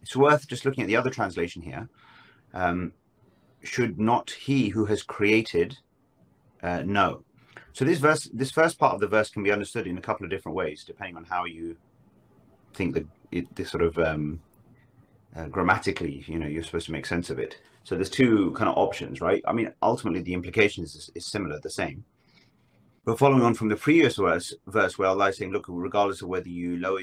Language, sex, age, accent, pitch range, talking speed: English, male, 30-49, British, 85-110 Hz, 205 wpm